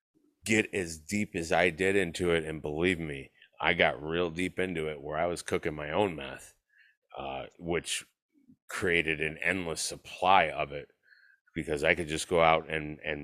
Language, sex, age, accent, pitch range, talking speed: English, male, 30-49, American, 80-105 Hz, 180 wpm